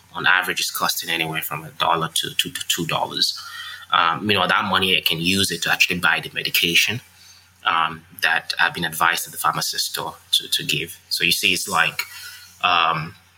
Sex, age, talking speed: male, 20-39, 185 wpm